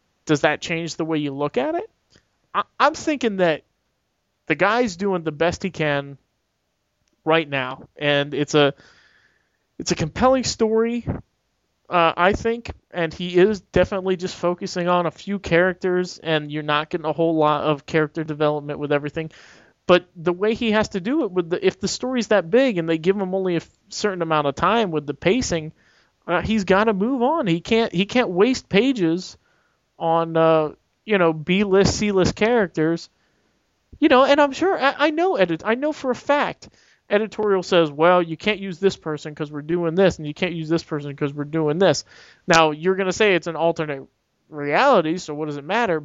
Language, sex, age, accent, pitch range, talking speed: English, male, 30-49, American, 155-205 Hz, 200 wpm